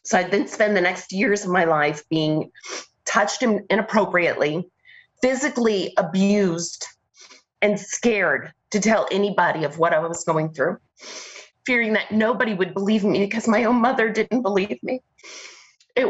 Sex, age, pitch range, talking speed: female, 30-49, 185-230 Hz, 150 wpm